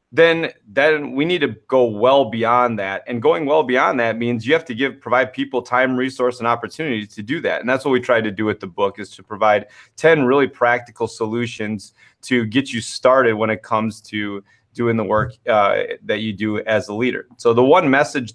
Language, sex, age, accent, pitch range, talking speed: English, male, 30-49, American, 110-125 Hz, 220 wpm